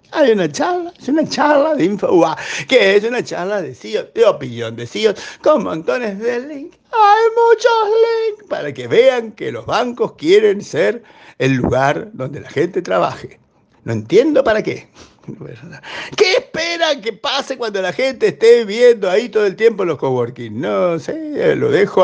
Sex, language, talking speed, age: male, Spanish, 170 wpm, 50-69